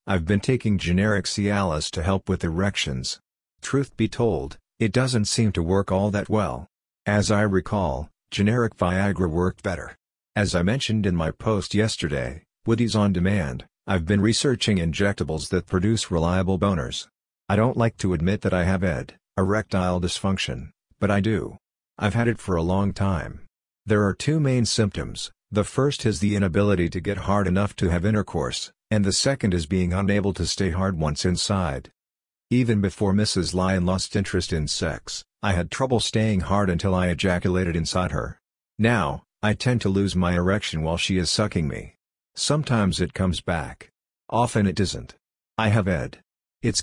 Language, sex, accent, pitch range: English, male, American, 90-105 Hz